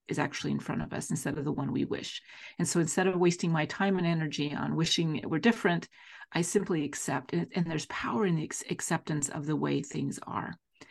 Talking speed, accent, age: 230 wpm, American, 40-59